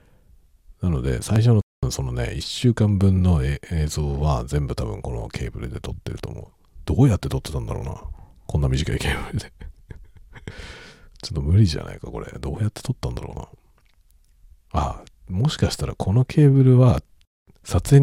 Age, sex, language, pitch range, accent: 50-69, male, Japanese, 70-95 Hz, native